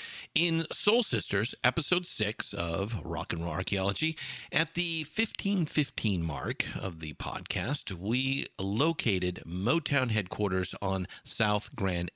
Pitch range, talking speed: 90-135 Hz, 120 wpm